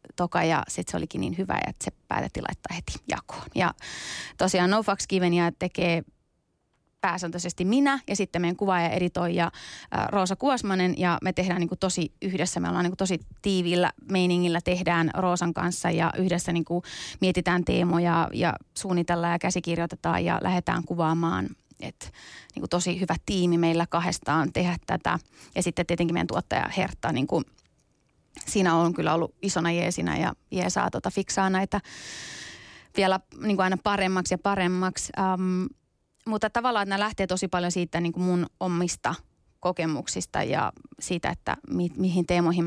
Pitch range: 170-190 Hz